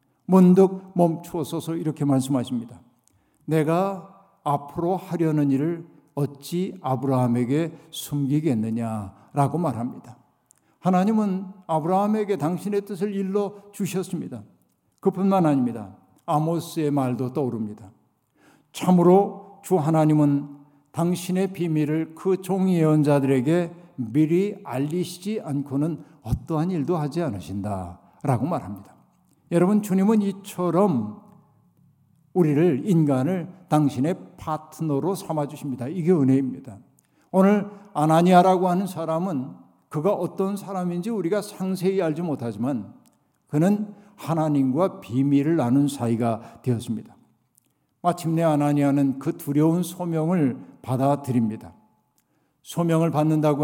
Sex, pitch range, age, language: male, 140-185 Hz, 60-79, Korean